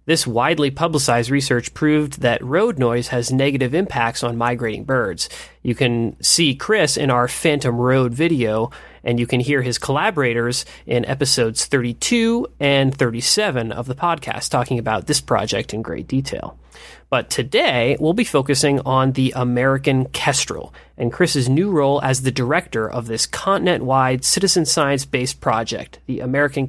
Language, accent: English, American